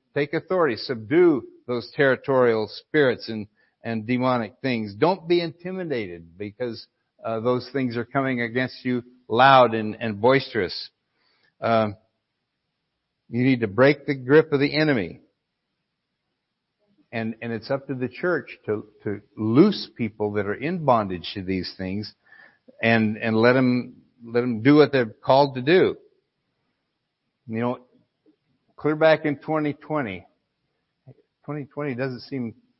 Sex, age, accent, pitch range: male, 60-79, American, 105-140 Hz